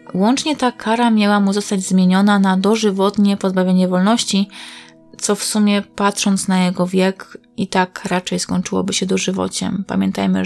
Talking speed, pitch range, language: 145 wpm, 180-205 Hz, Polish